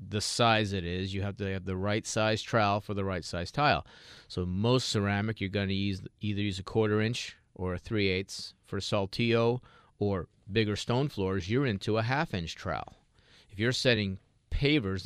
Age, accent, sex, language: 30-49, American, male, English